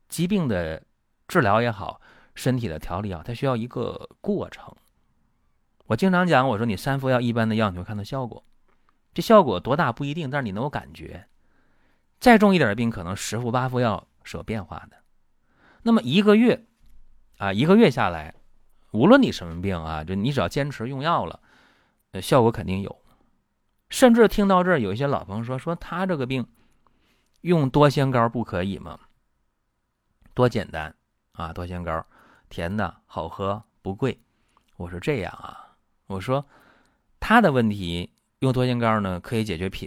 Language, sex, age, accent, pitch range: Chinese, male, 30-49, native, 90-140 Hz